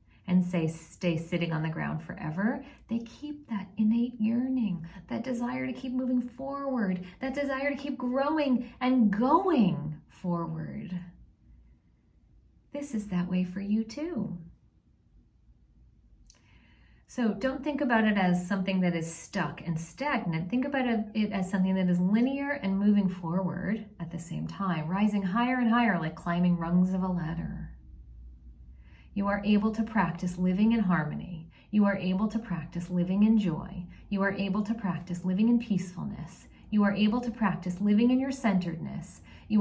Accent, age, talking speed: American, 40-59, 160 wpm